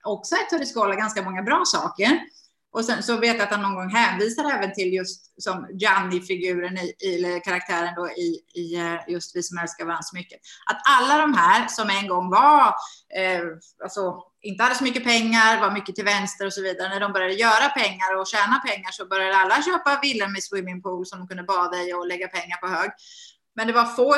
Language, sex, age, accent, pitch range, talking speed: Swedish, female, 20-39, native, 185-225 Hz, 220 wpm